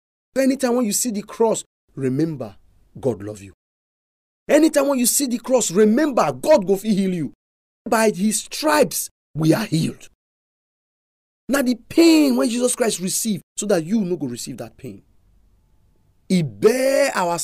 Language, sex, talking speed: English, male, 160 wpm